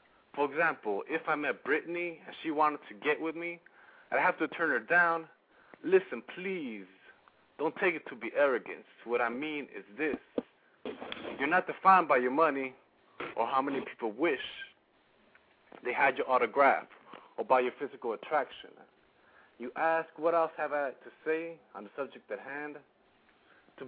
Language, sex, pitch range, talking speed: English, male, 130-175 Hz, 165 wpm